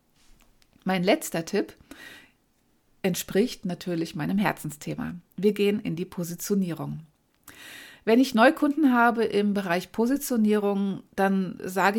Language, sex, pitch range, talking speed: German, female, 180-235 Hz, 105 wpm